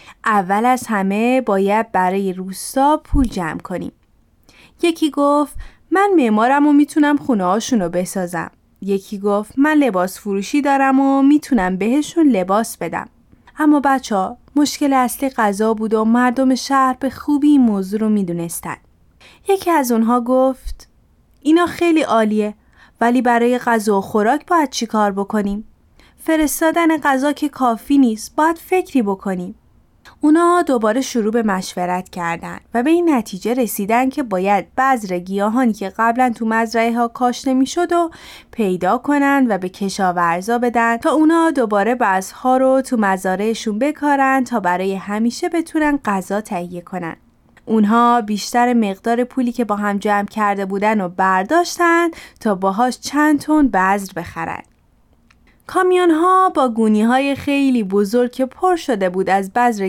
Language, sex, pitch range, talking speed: Persian, female, 200-280 Hz, 140 wpm